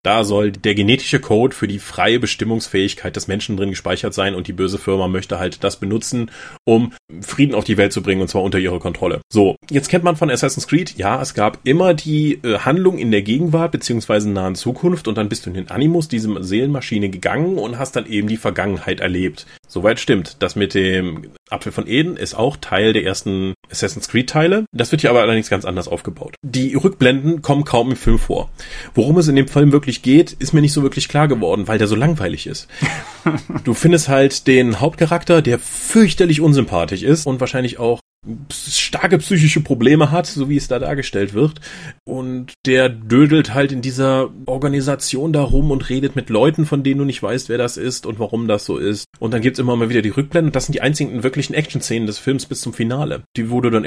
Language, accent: German, German